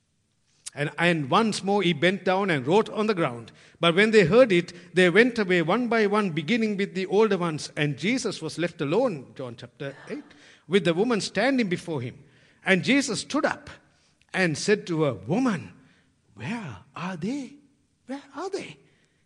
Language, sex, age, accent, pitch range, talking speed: English, male, 60-79, Indian, 130-210 Hz, 180 wpm